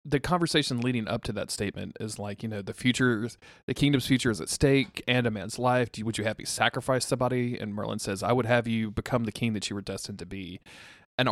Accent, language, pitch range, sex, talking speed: American, English, 105-130 Hz, male, 255 wpm